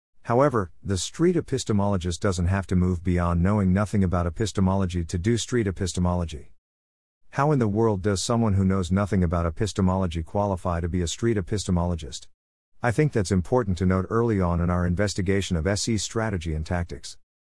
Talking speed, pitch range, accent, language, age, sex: 170 wpm, 90-115 Hz, American, English, 50-69, male